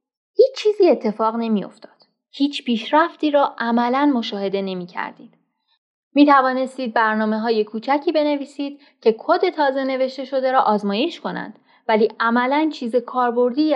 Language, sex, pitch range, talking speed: Persian, female, 215-275 Hz, 125 wpm